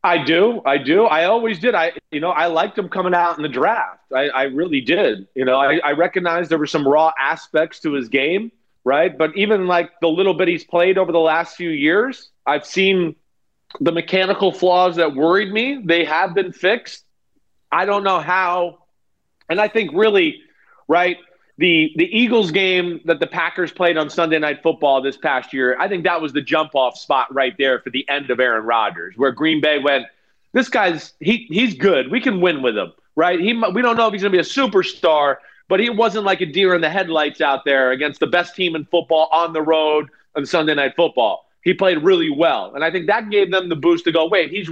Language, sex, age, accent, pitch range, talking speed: English, male, 40-59, American, 160-205 Hz, 225 wpm